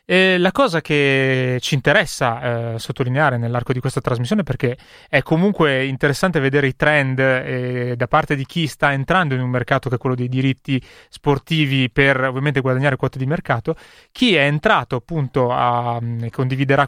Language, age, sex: Italian, 30-49, male